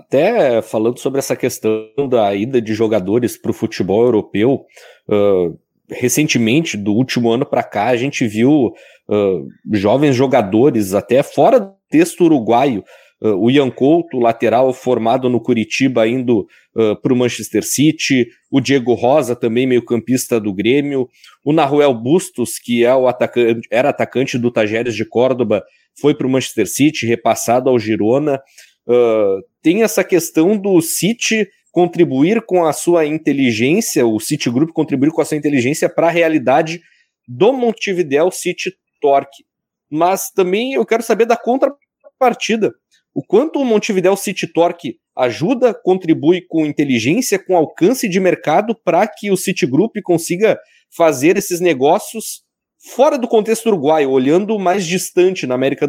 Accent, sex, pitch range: Brazilian, male, 125-185 Hz